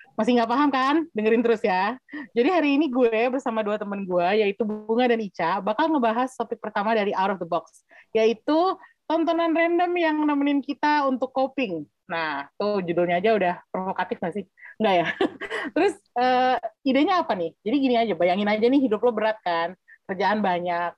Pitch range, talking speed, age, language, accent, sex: 210-285 Hz, 180 wpm, 30-49, Indonesian, native, female